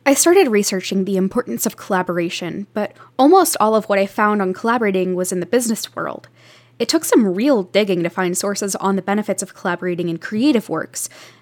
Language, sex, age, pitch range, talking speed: English, female, 10-29, 185-250 Hz, 195 wpm